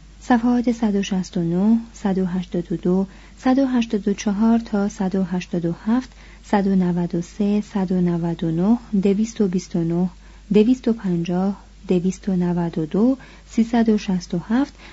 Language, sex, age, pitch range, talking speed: Persian, female, 30-49, 180-225 Hz, 50 wpm